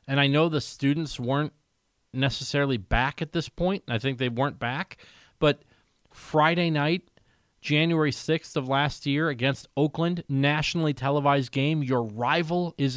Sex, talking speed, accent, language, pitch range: male, 155 wpm, American, English, 130-165 Hz